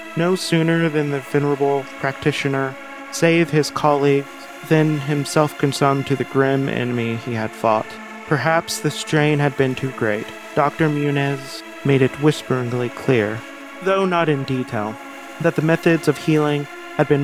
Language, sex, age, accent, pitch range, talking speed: English, male, 30-49, American, 125-155 Hz, 150 wpm